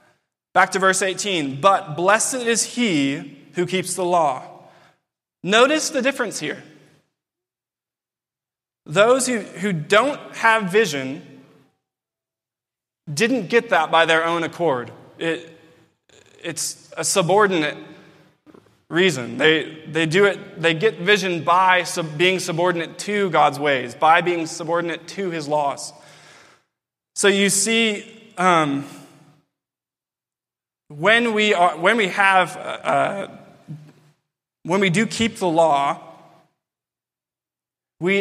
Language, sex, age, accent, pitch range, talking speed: English, male, 20-39, American, 160-200 Hz, 115 wpm